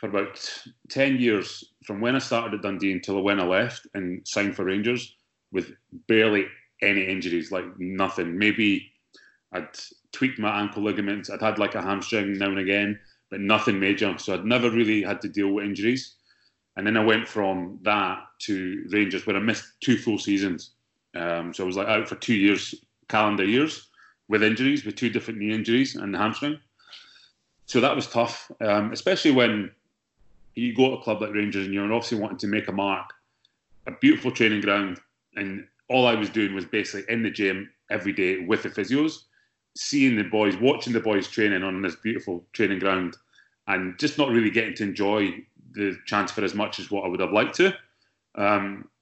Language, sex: English, male